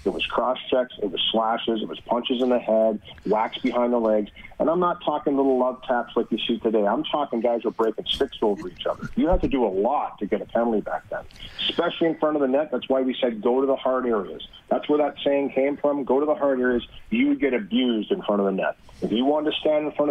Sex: male